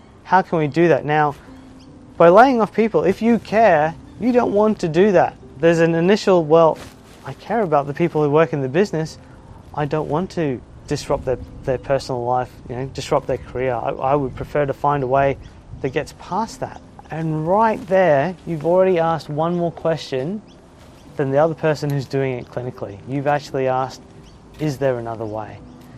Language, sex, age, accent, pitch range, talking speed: English, male, 30-49, Australian, 130-160 Hz, 190 wpm